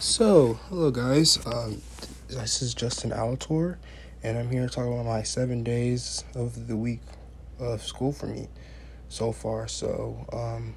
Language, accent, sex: English, American, male